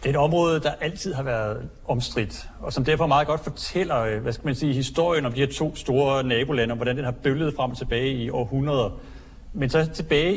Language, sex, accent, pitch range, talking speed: Danish, male, native, 125-155 Hz, 225 wpm